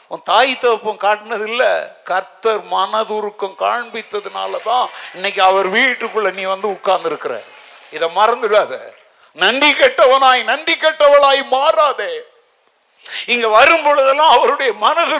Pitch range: 220-315 Hz